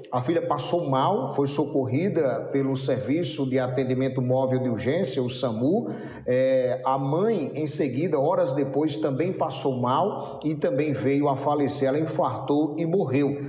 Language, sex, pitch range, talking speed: Portuguese, male, 135-155 Hz, 145 wpm